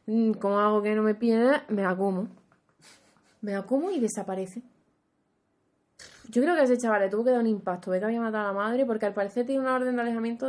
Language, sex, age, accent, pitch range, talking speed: Spanish, female, 20-39, Spanish, 195-245 Hz, 230 wpm